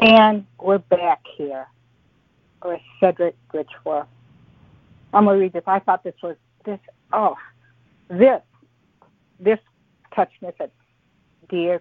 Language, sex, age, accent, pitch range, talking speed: English, female, 60-79, American, 165-210 Hz, 120 wpm